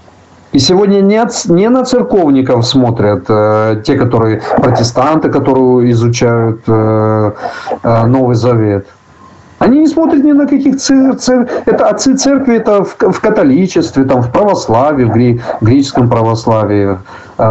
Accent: native